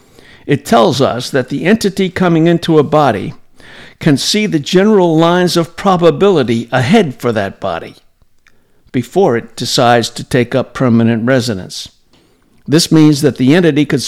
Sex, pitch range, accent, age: male, 120-160 Hz, American, 60-79